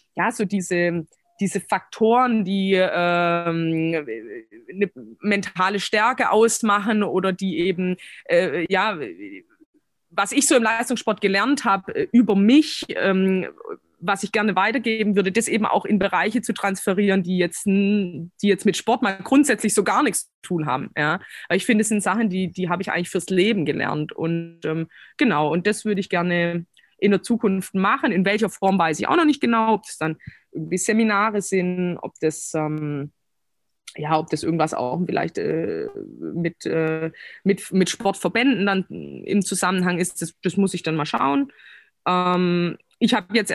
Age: 20-39